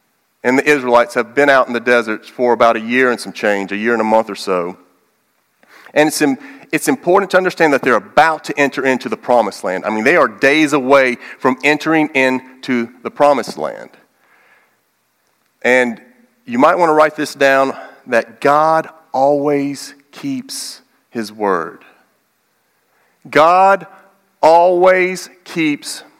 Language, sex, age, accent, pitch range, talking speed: English, male, 40-59, American, 110-150 Hz, 155 wpm